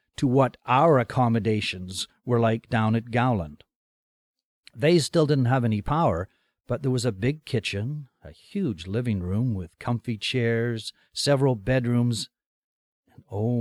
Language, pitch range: English, 100-135 Hz